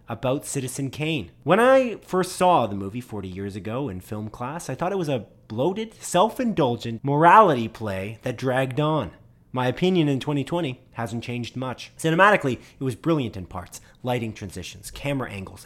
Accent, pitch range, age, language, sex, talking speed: American, 115-155 Hz, 30-49, English, male, 170 wpm